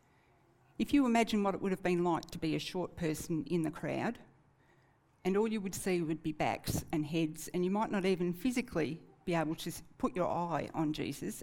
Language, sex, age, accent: English, female, 60-79, Australian